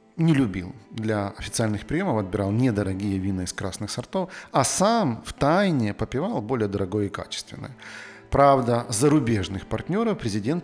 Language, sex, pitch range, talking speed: Russian, male, 105-130 Hz, 135 wpm